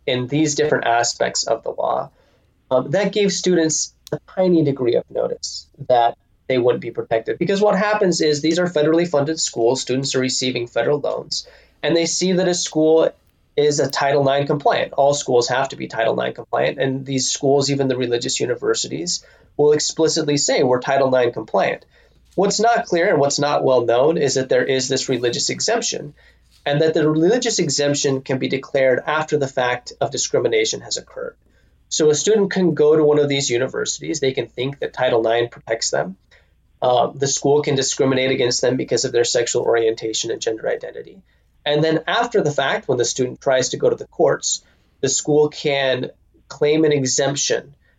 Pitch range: 130-180 Hz